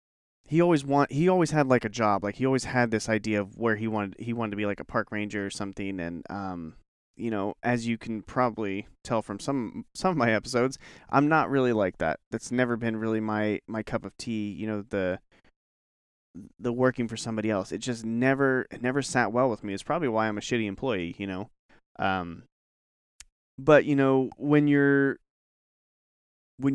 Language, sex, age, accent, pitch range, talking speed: English, male, 30-49, American, 105-125 Hz, 205 wpm